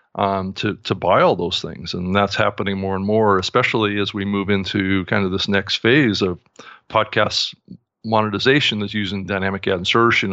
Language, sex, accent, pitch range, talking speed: English, male, American, 95-110 Hz, 180 wpm